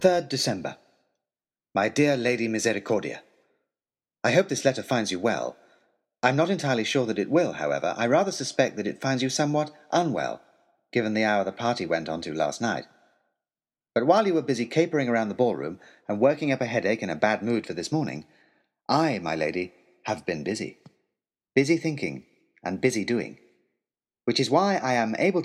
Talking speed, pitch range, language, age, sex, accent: 185 wpm, 110-145 Hz, English, 30-49, male, British